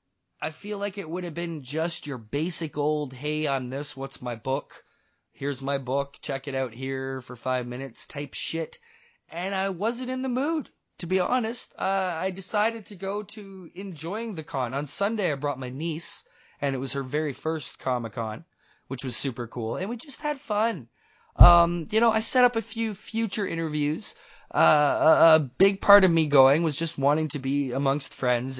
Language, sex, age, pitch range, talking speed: English, male, 20-39, 130-190 Hz, 195 wpm